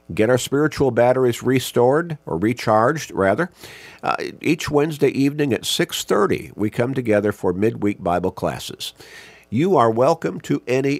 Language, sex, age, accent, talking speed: English, male, 50-69, American, 140 wpm